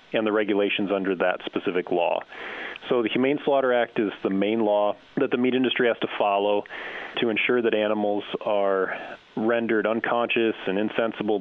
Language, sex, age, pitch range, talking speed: English, male, 30-49, 100-115 Hz, 170 wpm